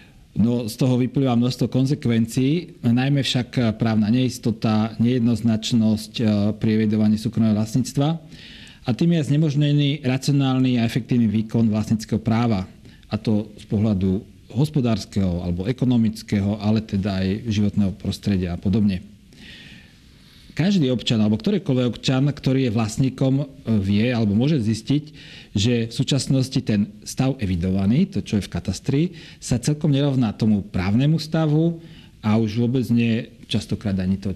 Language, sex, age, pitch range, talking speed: Slovak, male, 40-59, 105-130 Hz, 130 wpm